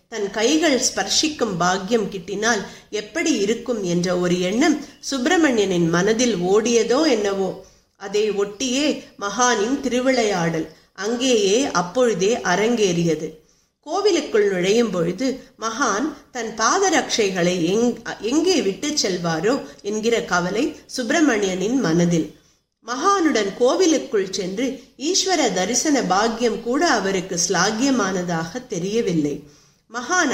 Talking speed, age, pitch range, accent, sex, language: 90 wpm, 50-69, 190-260 Hz, native, female, Tamil